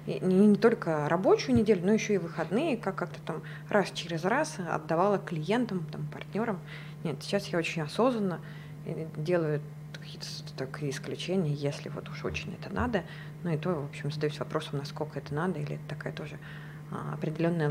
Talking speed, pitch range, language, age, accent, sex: 165 wpm, 155-195 Hz, Russian, 20-39, native, female